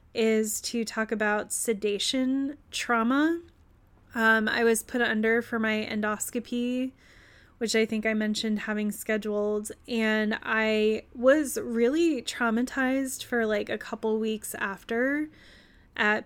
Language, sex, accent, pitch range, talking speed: English, female, American, 210-235 Hz, 120 wpm